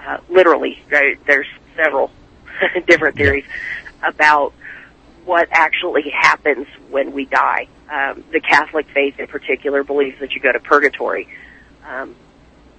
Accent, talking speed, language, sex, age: American, 125 wpm, English, female, 40-59